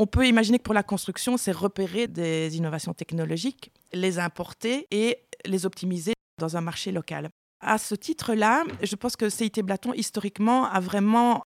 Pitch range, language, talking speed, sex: 180-225 Hz, French, 165 wpm, female